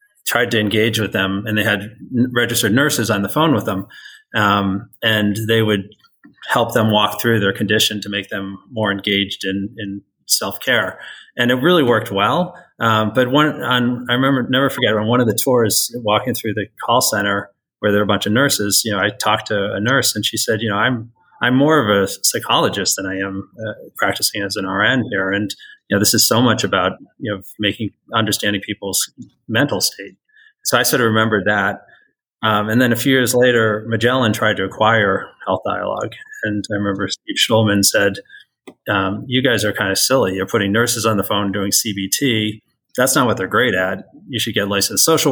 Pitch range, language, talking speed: 100-120 Hz, English, 210 wpm